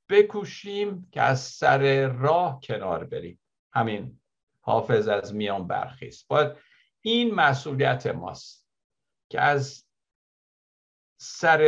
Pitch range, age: 115-165 Hz, 60-79